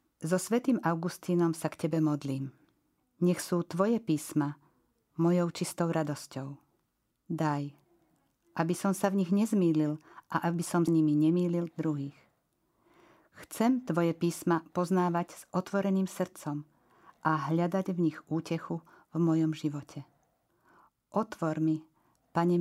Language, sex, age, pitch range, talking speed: Slovak, female, 50-69, 155-180 Hz, 120 wpm